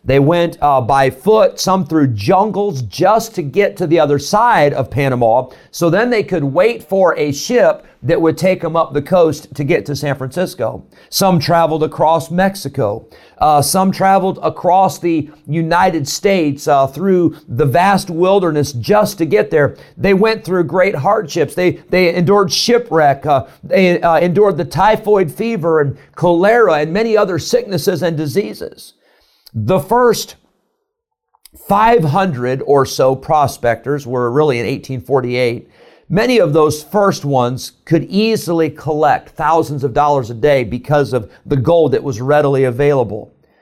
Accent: American